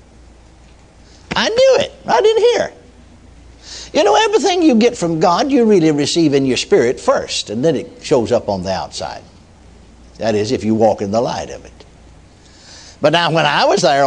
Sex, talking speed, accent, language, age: male, 190 wpm, American, English, 60-79